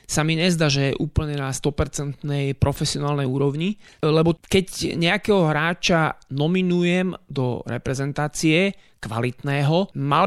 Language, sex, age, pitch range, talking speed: Slovak, male, 30-49, 140-175 Hz, 110 wpm